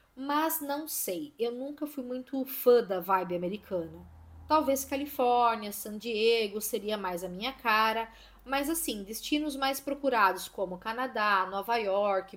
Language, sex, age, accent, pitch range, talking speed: Portuguese, female, 10-29, Brazilian, 195-265 Hz, 140 wpm